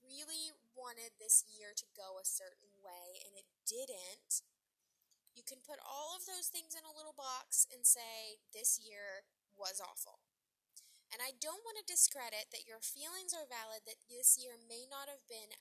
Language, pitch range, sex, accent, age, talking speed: English, 220-305 Hz, female, American, 10-29, 180 wpm